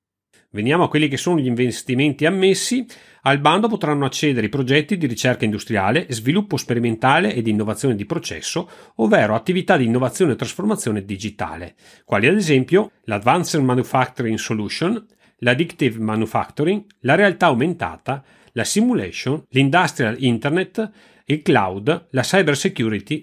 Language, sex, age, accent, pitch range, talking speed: Italian, male, 40-59, native, 110-160 Hz, 130 wpm